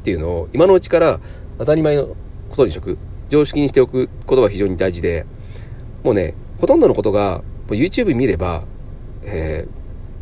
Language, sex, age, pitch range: Japanese, male, 40-59, 90-125 Hz